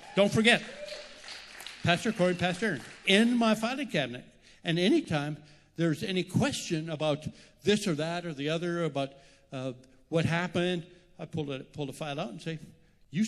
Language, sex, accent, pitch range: English, male, American, 155-210 Hz